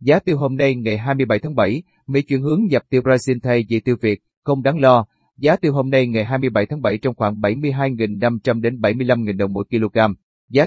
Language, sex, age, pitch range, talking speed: Vietnamese, male, 30-49, 115-140 Hz, 215 wpm